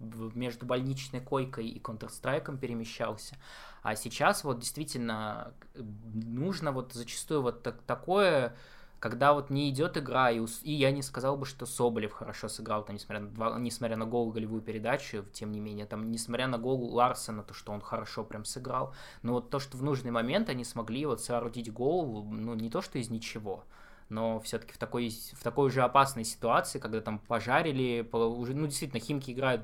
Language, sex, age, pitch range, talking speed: Russian, male, 20-39, 110-130 Hz, 180 wpm